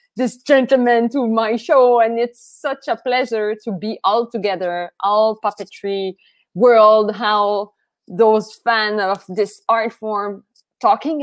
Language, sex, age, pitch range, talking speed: English, female, 20-39, 195-255 Hz, 135 wpm